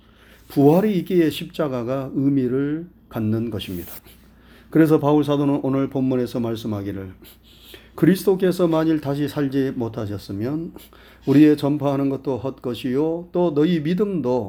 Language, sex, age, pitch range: Korean, male, 30-49, 120-160 Hz